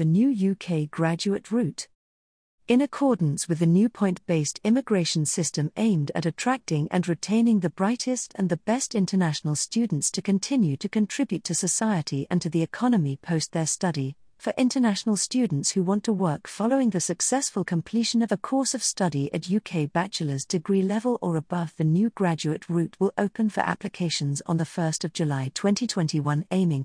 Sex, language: female, English